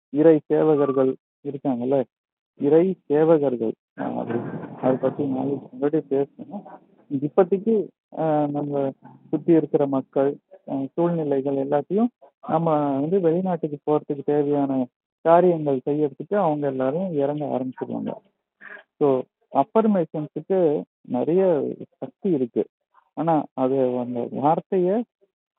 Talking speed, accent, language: 75 wpm, native, Tamil